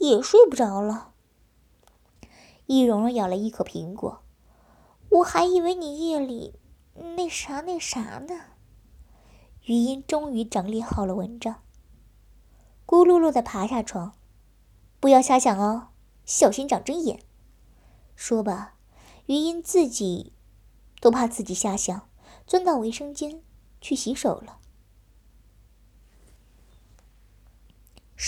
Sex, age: male, 20-39